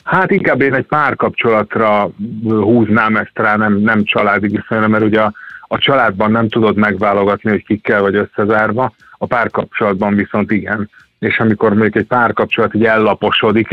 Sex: male